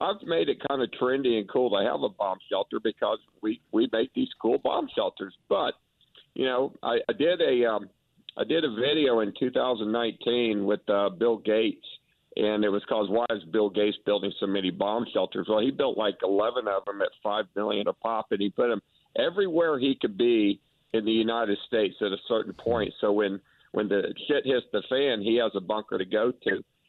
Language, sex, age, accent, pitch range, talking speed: English, male, 50-69, American, 105-120 Hz, 210 wpm